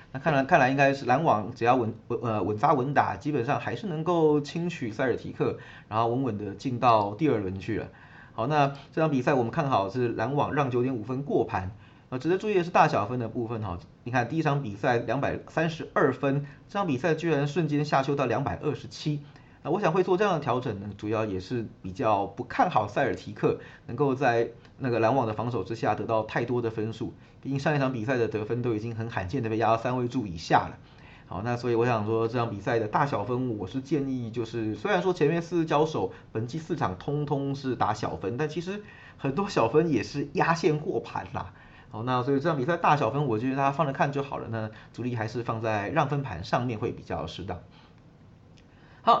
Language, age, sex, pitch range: Chinese, 30-49, male, 115-145 Hz